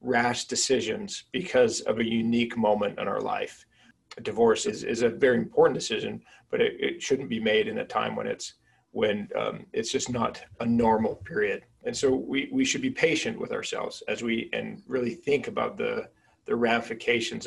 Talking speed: 190 wpm